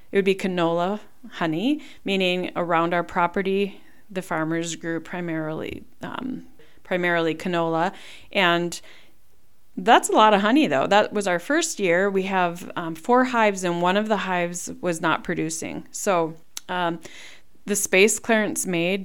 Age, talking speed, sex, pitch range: 30-49, 150 wpm, female, 180-220 Hz